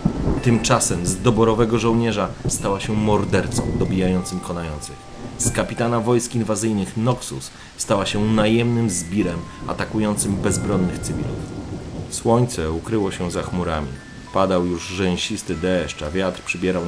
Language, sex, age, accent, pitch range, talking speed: Polish, male, 30-49, native, 85-105 Hz, 115 wpm